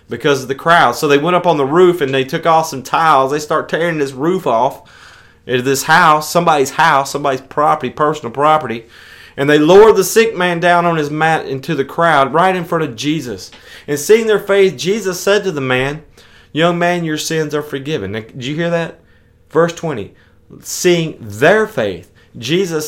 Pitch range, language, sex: 135-180 Hz, English, male